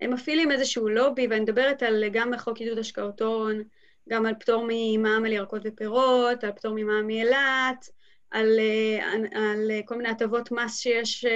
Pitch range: 225-290 Hz